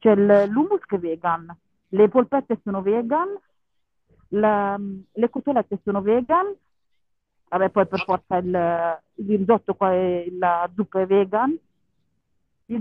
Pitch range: 200-275 Hz